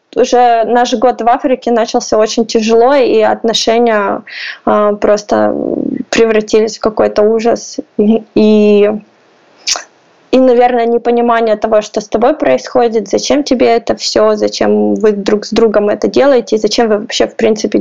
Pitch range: 220-255 Hz